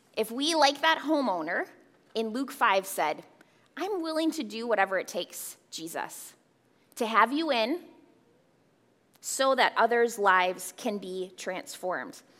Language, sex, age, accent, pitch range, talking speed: English, female, 20-39, American, 205-285 Hz, 135 wpm